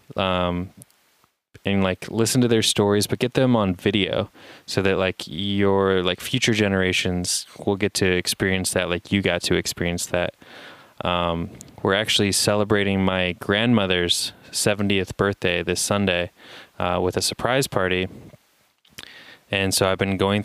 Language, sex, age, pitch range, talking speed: English, male, 20-39, 90-105 Hz, 145 wpm